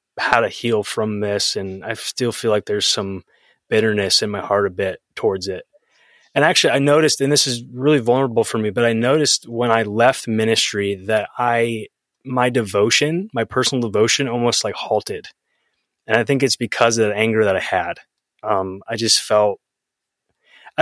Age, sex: 20-39, male